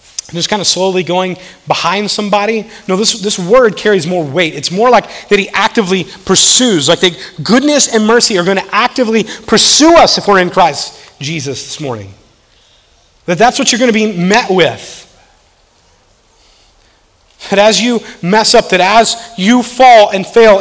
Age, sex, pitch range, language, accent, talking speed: 30-49, male, 140-220 Hz, English, American, 175 wpm